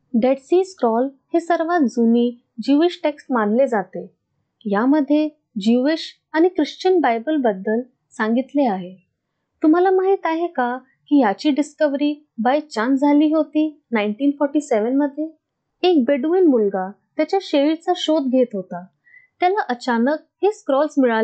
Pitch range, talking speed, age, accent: 235-320 Hz, 40 wpm, 20-39, native